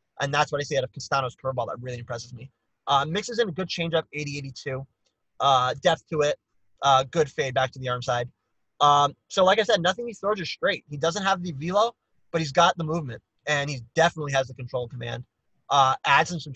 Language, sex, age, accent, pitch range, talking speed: English, male, 20-39, American, 130-180 Hz, 225 wpm